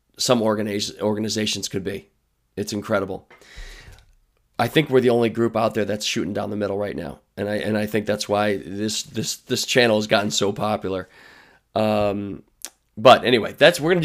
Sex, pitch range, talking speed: male, 105-140 Hz, 180 wpm